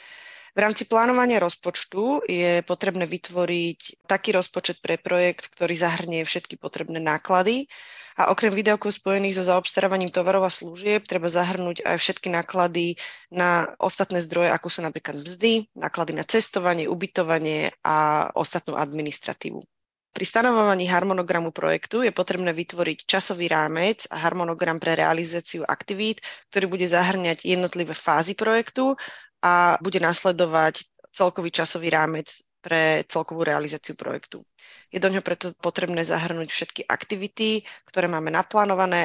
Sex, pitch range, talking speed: female, 165-190 Hz, 130 wpm